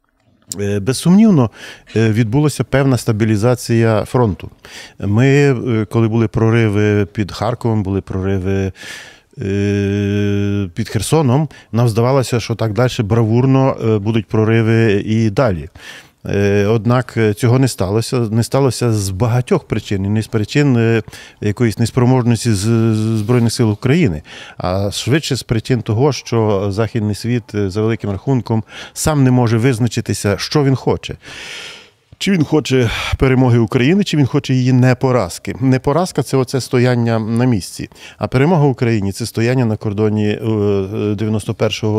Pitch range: 105-130 Hz